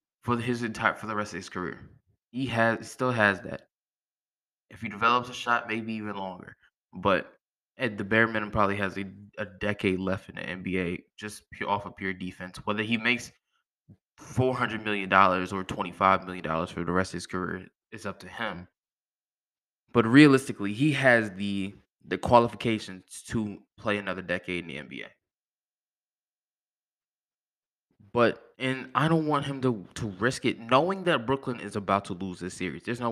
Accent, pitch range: American, 95-120 Hz